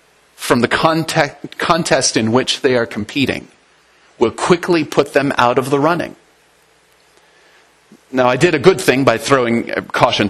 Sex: male